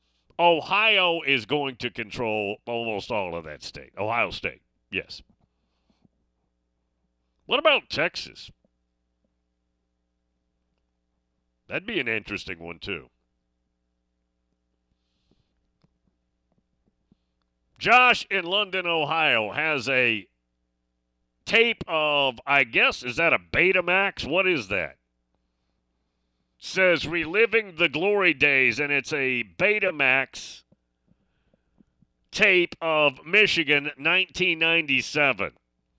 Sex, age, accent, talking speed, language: male, 40-59, American, 85 wpm, English